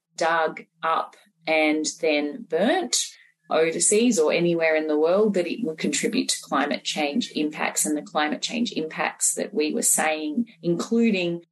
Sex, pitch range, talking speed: female, 155-215 Hz, 150 wpm